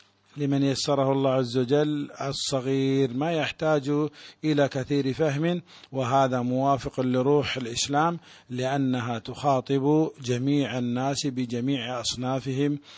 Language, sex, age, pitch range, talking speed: Malay, male, 50-69, 125-140 Hz, 95 wpm